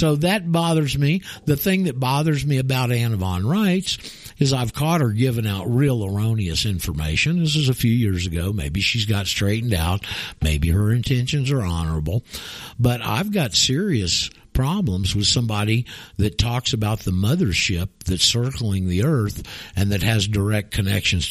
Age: 60-79